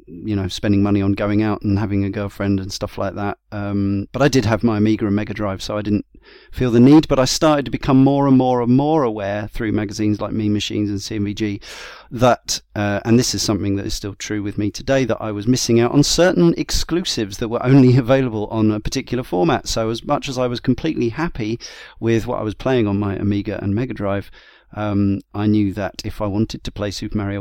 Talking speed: 235 wpm